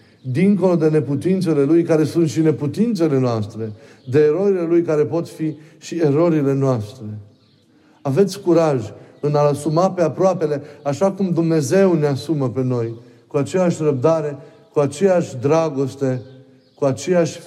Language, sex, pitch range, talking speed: Romanian, male, 120-155 Hz, 135 wpm